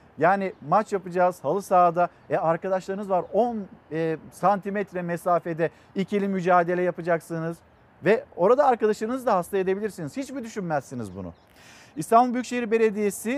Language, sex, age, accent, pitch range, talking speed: Turkish, male, 50-69, native, 165-225 Hz, 120 wpm